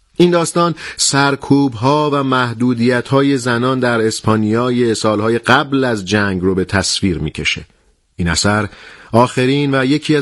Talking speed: 135 wpm